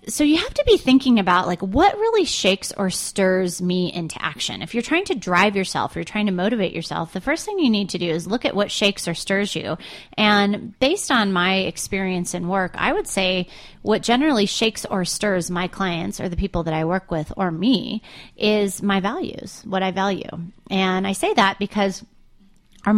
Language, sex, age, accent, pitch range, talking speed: English, female, 30-49, American, 175-225 Hz, 210 wpm